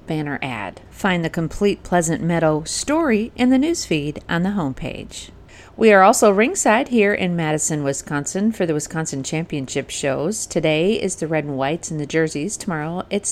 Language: English